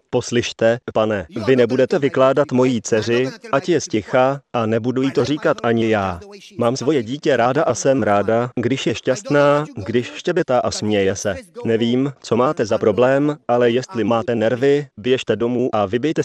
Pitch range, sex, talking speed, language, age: 110-135 Hz, male, 165 wpm, Slovak, 30-49